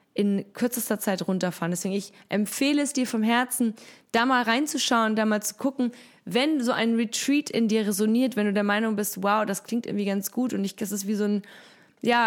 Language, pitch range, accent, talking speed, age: German, 195-235 Hz, German, 215 wpm, 20-39